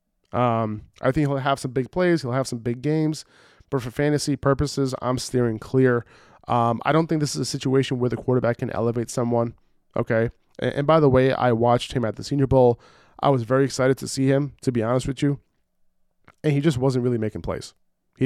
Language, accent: English, American